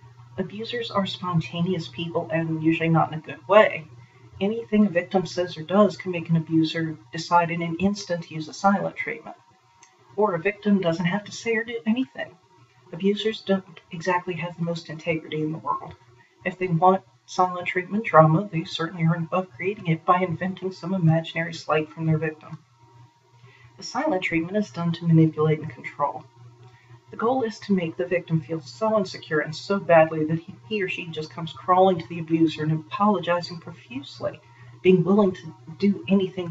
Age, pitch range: 40-59, 155-190 Hz